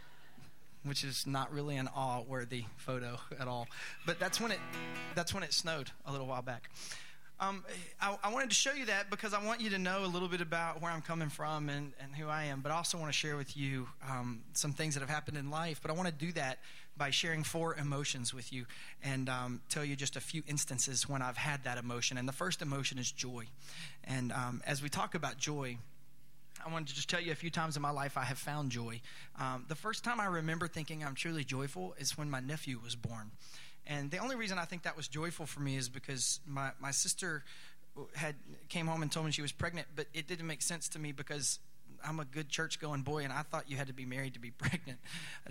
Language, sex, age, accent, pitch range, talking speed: English, male, 30-49, American, 135-165 Hz, 245 wpm